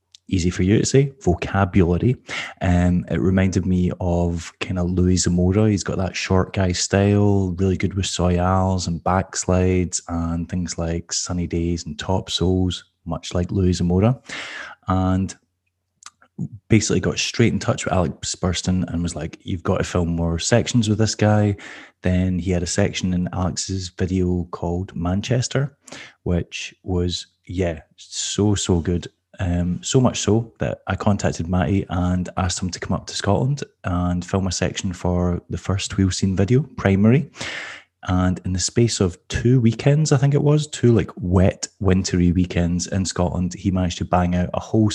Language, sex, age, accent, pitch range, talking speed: English, male, 20-39, British, 90-100 Hz, 170 wpm